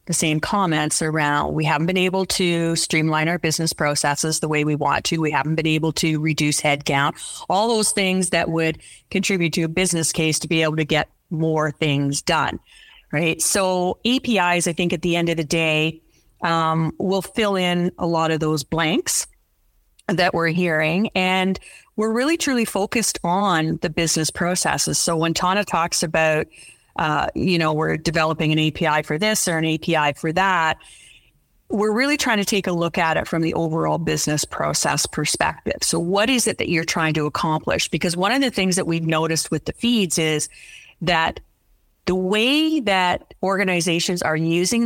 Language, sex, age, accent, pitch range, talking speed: English, female, 30-49, American, 160-190 Hz, 185 wpm